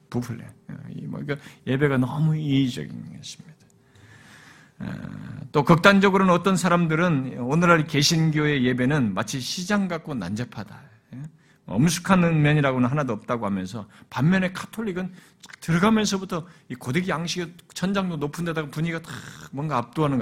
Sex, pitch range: male, 125-180 Hz